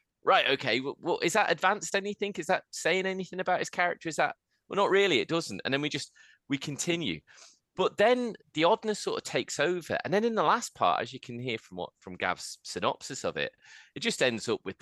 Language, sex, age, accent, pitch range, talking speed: English, male, 20-39, British, 120-190 Hz, 235 wpm